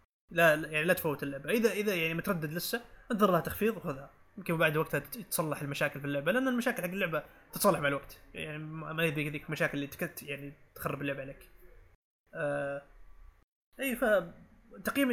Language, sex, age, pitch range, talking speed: Arabic, male, 20-39, 145-175 Hz, 165 wpm